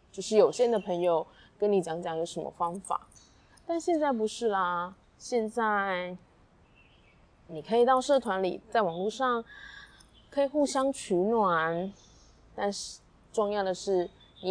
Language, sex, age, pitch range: Chinese, female, 20-39, 175-235 Hz